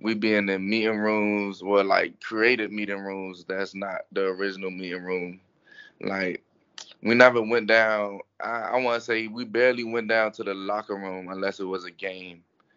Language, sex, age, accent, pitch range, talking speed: English, male, 20-39, American, 100-120 Hz, 185 wpm